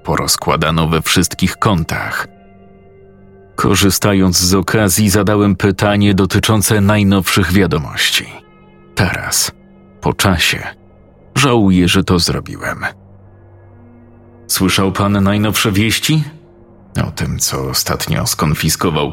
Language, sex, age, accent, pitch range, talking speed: Polish, male, 40-59, native, 95-105 Hz, 90 wpm